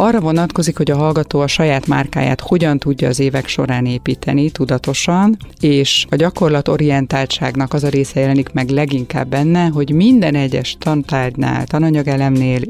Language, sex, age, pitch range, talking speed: Hungarian, female, 30-49, 130-155 Hz, 140 wpm